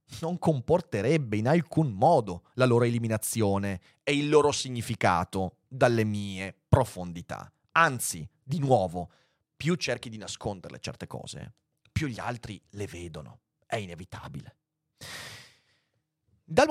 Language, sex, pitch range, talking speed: Italian, male, 110-165 Hz, 115 wpm